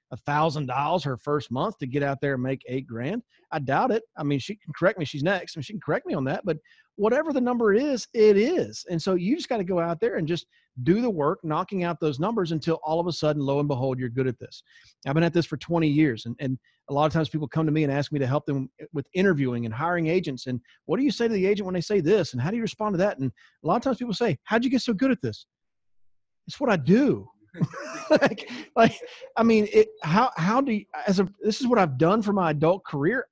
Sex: male